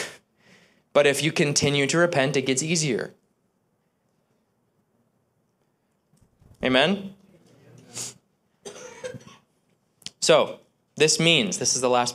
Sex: male